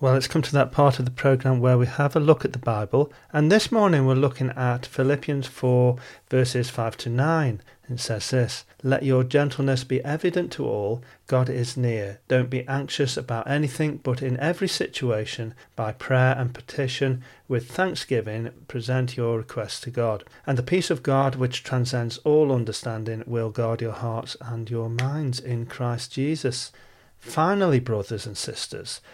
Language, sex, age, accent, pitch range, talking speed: English, male, 40-59, British, 120-145 Hz, 175 wpm